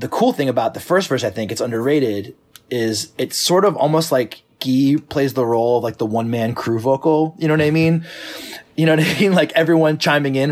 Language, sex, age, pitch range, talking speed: English, male, 20-39, 115-140 Hz, 240 wpm